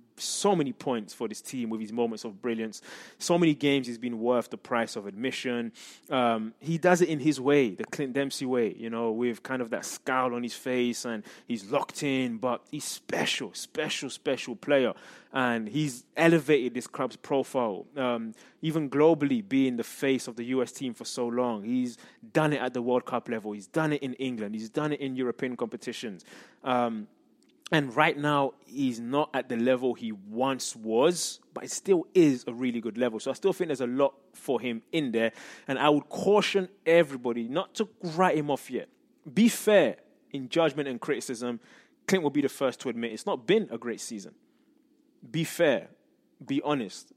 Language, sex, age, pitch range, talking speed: English, male, 20-39, 120-170 Hz, 195 wpm